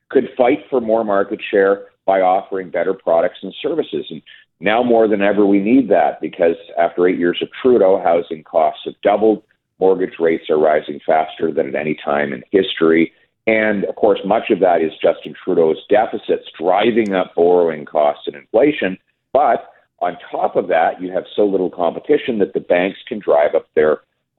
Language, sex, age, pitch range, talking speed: English, male, 50-69, 85-120 Hz, 185 wpm